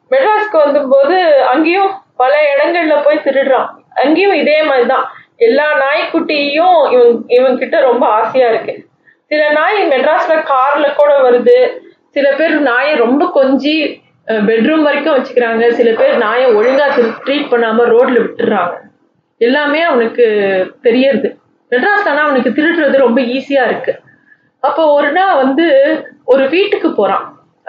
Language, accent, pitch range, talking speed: Tamil, native, 245-315 Hz, 125 wpm